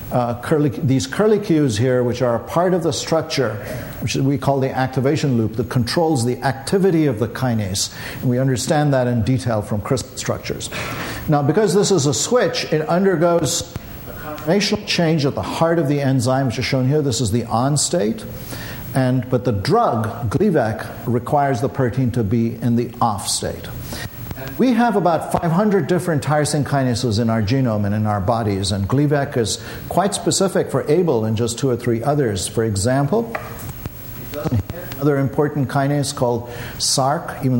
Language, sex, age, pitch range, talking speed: English, male, 50-69, 120-150 Hz, 175 wpm